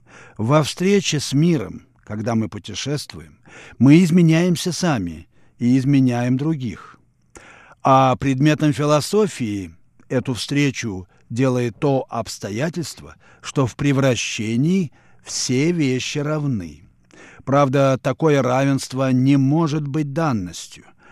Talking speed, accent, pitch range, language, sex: 95 wpm, native, 120-150 Hz, Russian, male